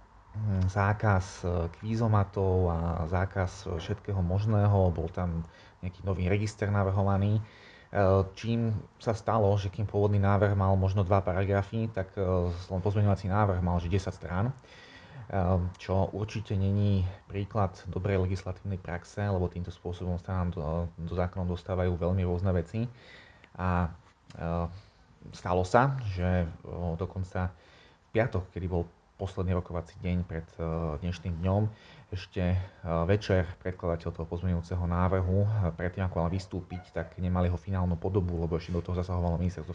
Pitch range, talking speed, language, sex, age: 85-100 Hz, 125 wpm, Slovak, male, 30-49